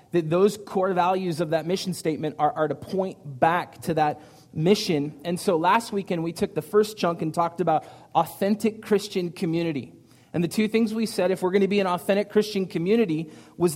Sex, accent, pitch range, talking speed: male, American, 150-190 Hz, 205 wpm